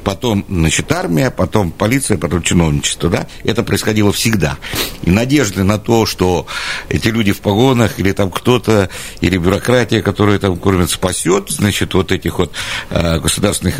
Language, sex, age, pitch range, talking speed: Russian, male, 60-79, 90-130 Hz, 150 wpm